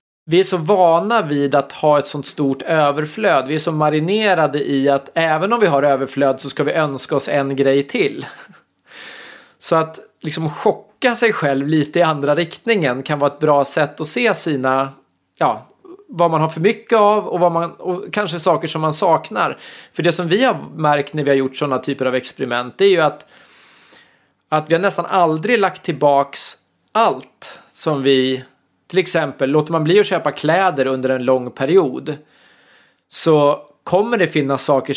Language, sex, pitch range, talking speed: English, male, 140-175 Hz, 175 wpm